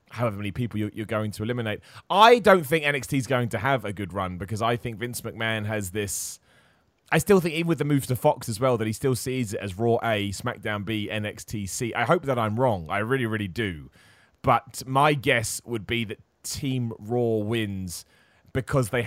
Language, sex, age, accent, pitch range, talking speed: English, male, 30-49, British, 110-140 Hz, 215 wpm